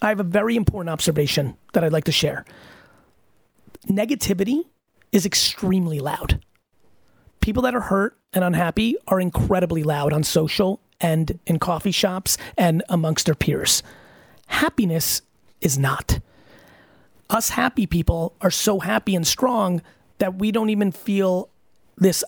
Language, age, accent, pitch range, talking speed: English, 30-49, American, 165-200 Hz, 135 wpm